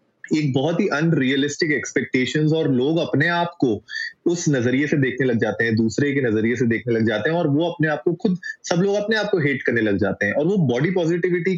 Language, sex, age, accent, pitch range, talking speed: Hindi, male, 30-49, native, 135-180 Hz, 235 wpm